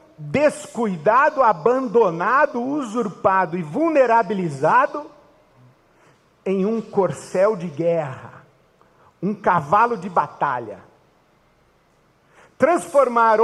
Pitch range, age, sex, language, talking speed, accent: 200-285 Hz, 50-69, male, Portuguese, 65 wpm, Brazilian